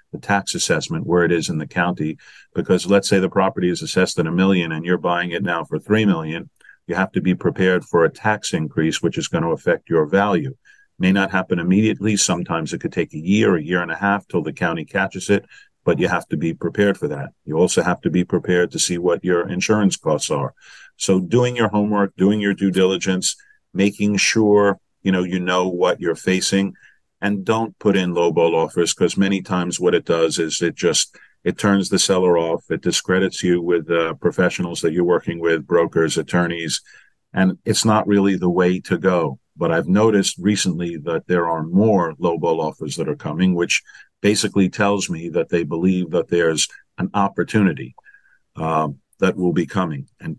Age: 50-69